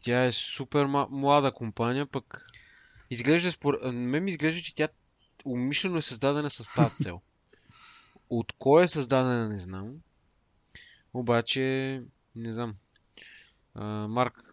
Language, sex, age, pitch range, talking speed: Bulgarian, male, 20-39, 115-145 Hz, 120 wpm